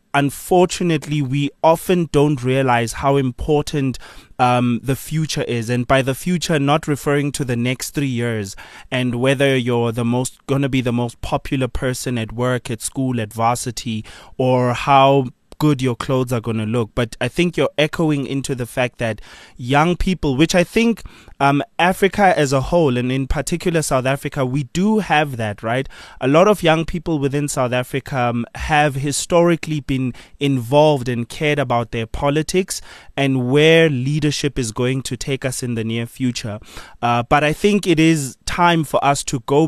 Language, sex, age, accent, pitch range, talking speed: English, male, 20-39, South African, 125-155 Hz, 180 wpm